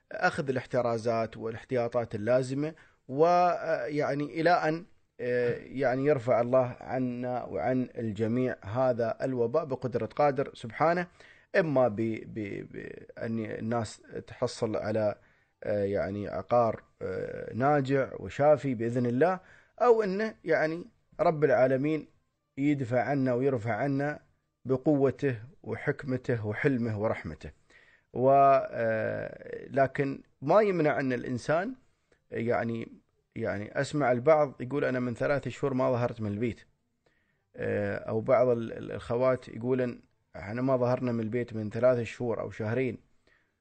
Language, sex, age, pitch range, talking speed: Arabic, male, 30-49, 115-150 Hz, 105 wpm